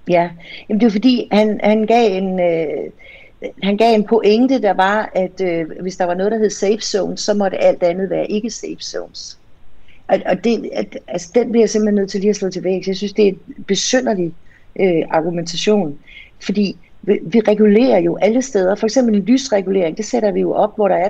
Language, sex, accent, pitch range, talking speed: Danish, female, native, 185-225 Hz, 210 wpm